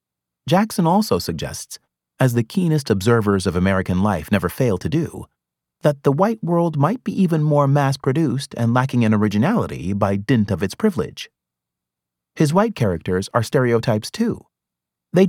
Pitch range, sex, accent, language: 95-155 Hz, male, American, English